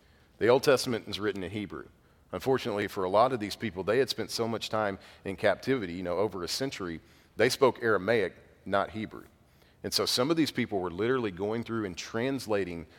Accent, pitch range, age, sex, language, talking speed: American, 90-125 Hz, 40-59, male, English, 205 wpm